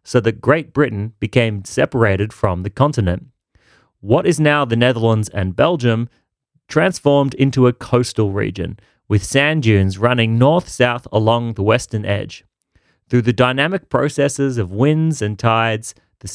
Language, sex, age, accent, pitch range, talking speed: English, male, 30-49, Australian, 105-145 Hz, 145 wpm